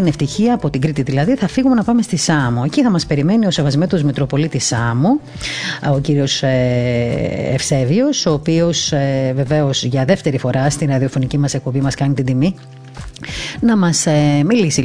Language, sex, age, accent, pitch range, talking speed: Greek, female, 30-49, native, 130-165 Hz, 160 wpm